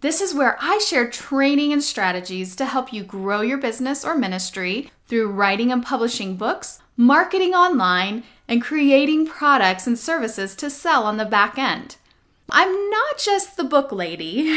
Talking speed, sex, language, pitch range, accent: 165 wpm, female, English, 215-315 Hz, American